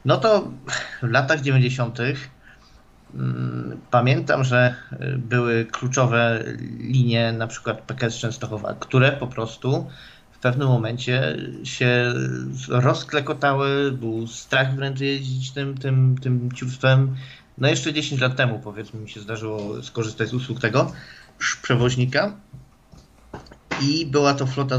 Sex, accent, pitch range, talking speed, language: male, native, 115-140 Hz, 115 wpm, Polish